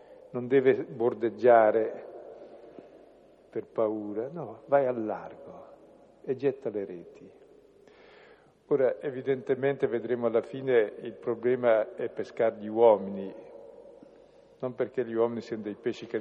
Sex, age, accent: male, 50-69, native